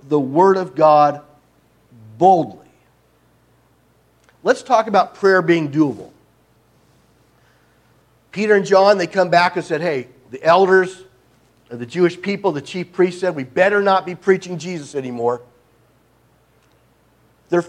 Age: 50-69